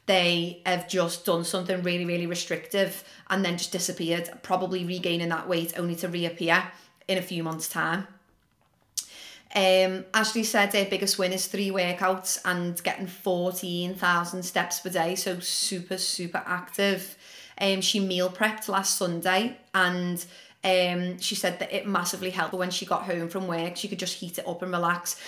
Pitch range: 175-195 Hz